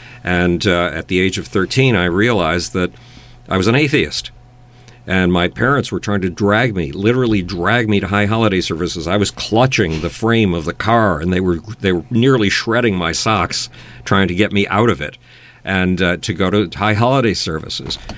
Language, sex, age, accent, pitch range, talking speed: English, male, 50-69, American, 90-115 Hz, 200 wpm